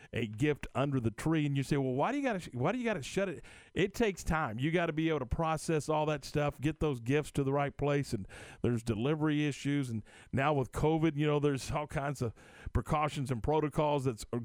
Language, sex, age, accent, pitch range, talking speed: English, male, 40-59, American, 115-155 Hz, 250 wpm